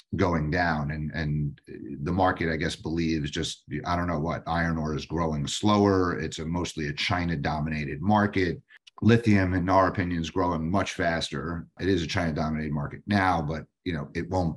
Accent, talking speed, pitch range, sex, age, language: American, 190 wpm, 80-95 Hz, male, 40-59, English